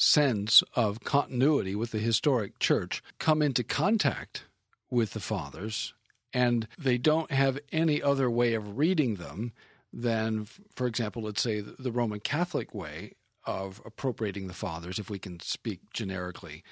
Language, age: English, 50-69